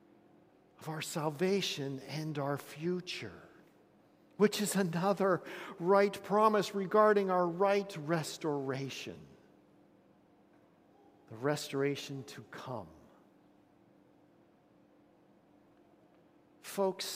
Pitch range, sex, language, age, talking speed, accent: 155-215 Hz, male, English, 50-69, 70 wpm, American